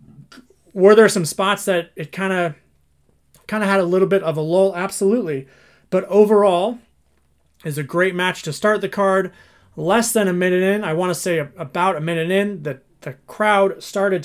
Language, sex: English, male